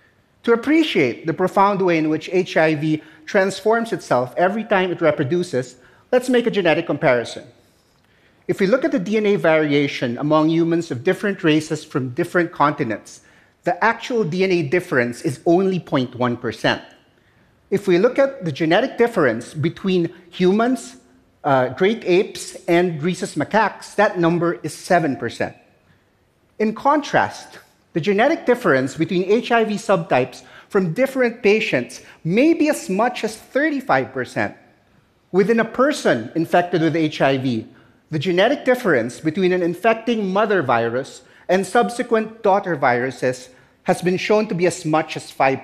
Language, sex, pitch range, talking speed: Russian, male, 155-220 Hz, 140 wpm